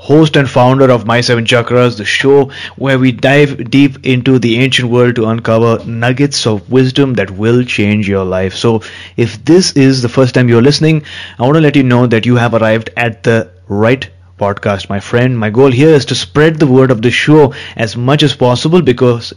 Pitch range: 115-145 Hz